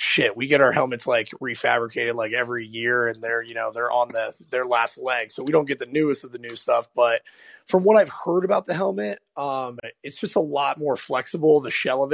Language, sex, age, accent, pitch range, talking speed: English, male, 30-49, American, 120-150 Hz, 235 wpm